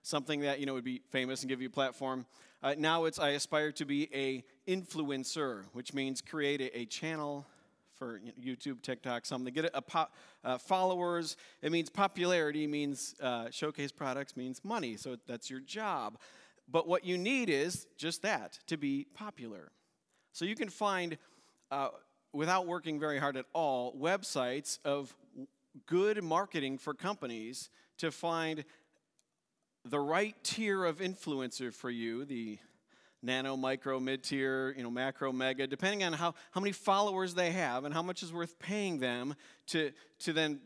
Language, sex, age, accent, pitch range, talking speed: English, male, 40-59, American, 135-175 Hz, 160 wpm